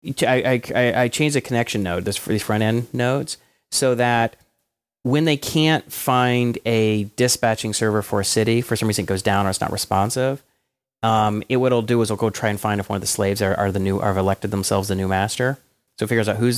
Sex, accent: male, American